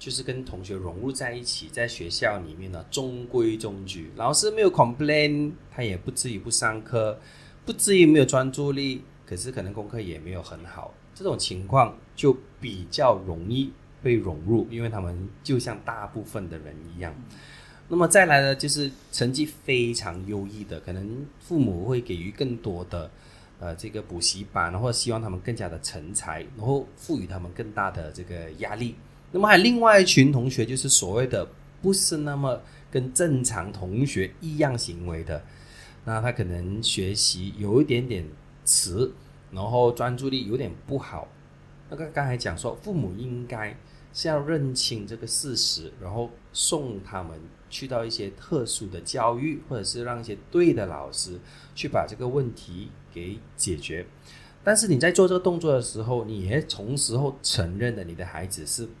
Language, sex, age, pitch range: English, male, 20-39, 95-140 Hz